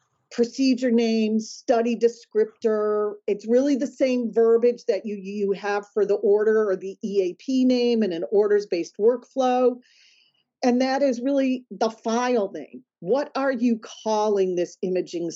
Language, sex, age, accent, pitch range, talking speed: English, female, 40-59, American, 190-245 Hz, 145 wpm